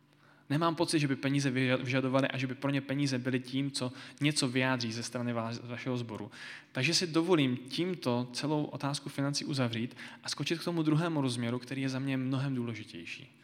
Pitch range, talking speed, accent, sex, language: 125-155 Hz, 185 wpm, native, male, Czech